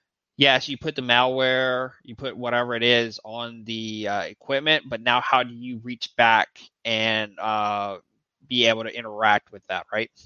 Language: English